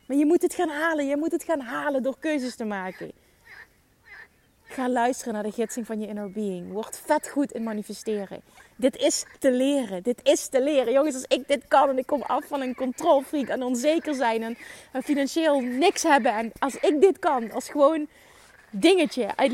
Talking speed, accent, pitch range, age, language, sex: 200 wpm, Dutch, 225-300 Hz, 20-39, Dutch, female